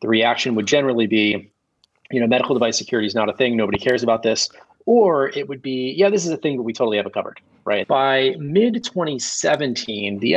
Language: English